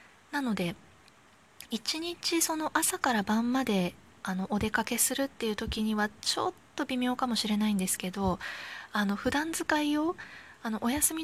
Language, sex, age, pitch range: Japanese, female, 20-39, 195-275 Hz